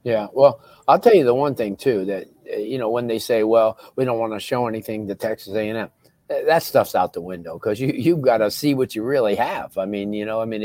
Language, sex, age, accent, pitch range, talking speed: English, male, 50-69, American, 110-140 Hz, 260 wpm